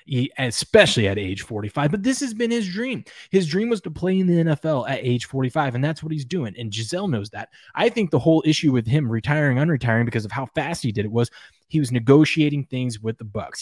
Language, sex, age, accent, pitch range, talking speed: English, male, 20-39, American, 115-155 Hz, 240 wpm